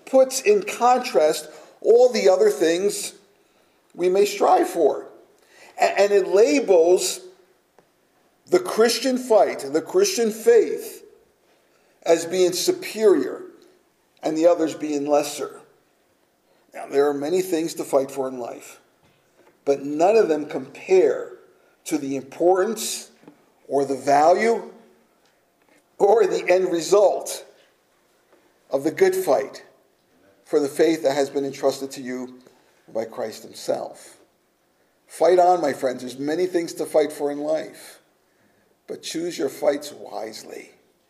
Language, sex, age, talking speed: English, male, 50-69, 125 wpm